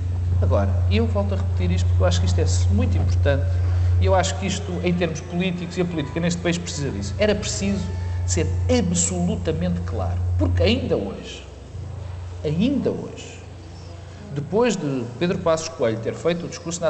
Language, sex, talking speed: Portuguese, male, 175 wpm